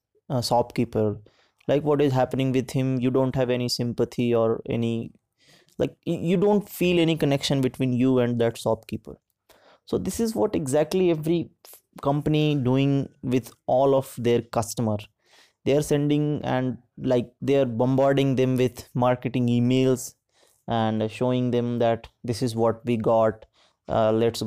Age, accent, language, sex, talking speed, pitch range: 20-39, Indian, English, male, 145 wpm, 115-135 Hz